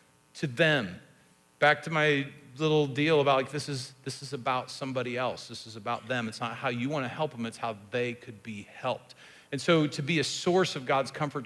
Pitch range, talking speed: 110-140 Hz, 220 wpm